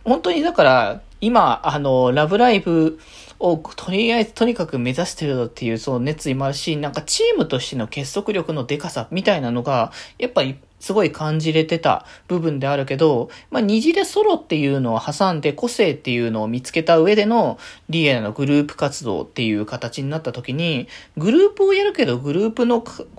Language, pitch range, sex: Japanese, 130-200 Hz, male